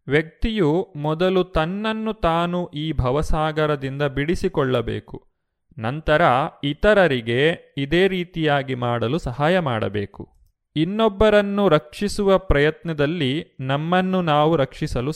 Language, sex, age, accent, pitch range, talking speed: Kannada, male, 30-49, native, 130-175 Hz, 80 wpm